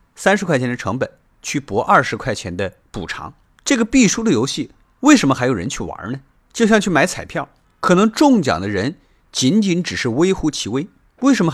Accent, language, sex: native, Chinese, male